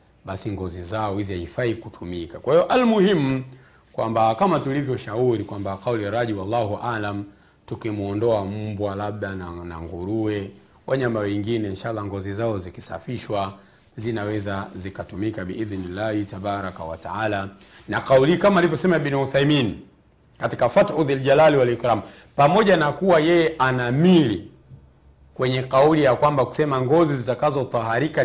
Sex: male